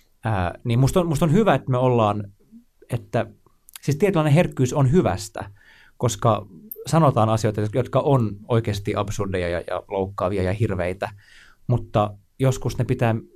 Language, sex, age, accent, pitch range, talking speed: Finnish, male, 30-49, native, 100-130 Hz, 145 wpm